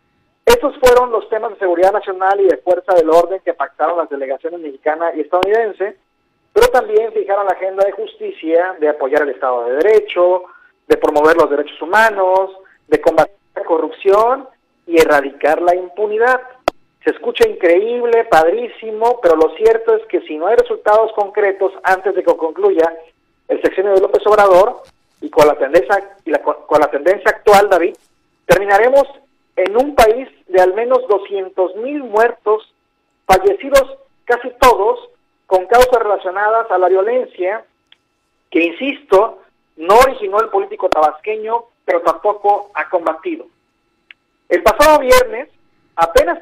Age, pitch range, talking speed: 50-69, 180-255 Hz, 145 wpm